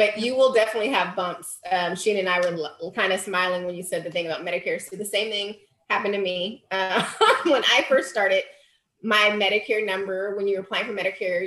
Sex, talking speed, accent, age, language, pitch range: female, 215 wpm, American, 30-49, English, 175-220 Hz